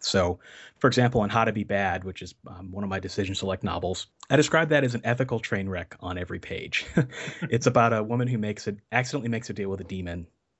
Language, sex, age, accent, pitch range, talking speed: English, male, 30-49, American, 95-120 Hz, 240 wpm